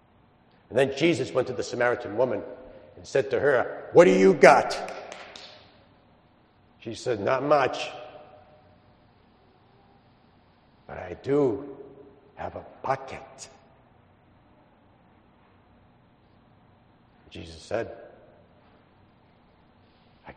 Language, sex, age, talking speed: English, male, 60-79, 85 wpm